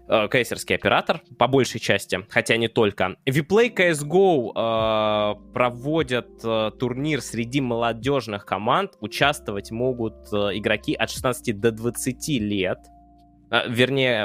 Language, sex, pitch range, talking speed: Russian, male, 105-130 Hz, 120 wpm